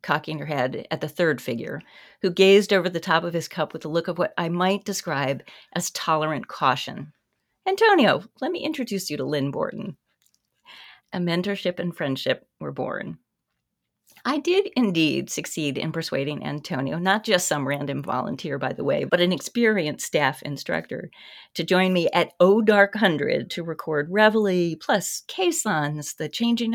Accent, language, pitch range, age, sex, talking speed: American, English, 165-220 Hz, 40-59, female, 165 wpm